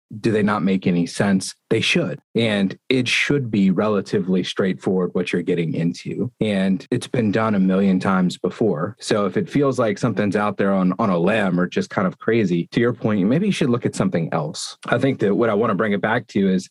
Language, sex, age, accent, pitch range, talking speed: English, male, 30-49, American, 90-125 Hz, 235 wpm